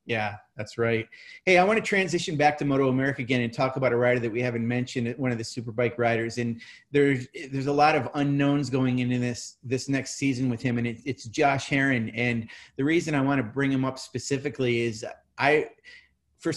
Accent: American